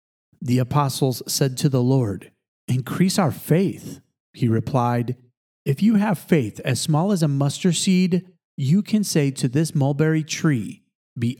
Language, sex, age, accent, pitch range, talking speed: English, male, 40-59, American, 125-160 Hz, 155 wpm